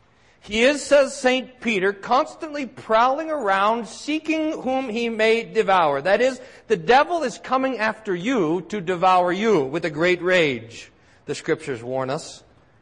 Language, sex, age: English, male, 40-59